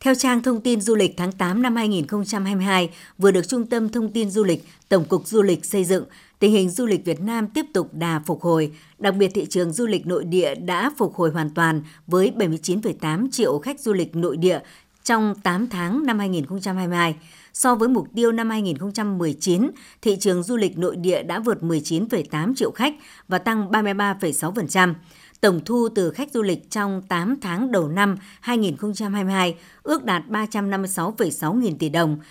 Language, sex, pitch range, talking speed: Vietnamese, male, 175-225 Hz, 185 wpm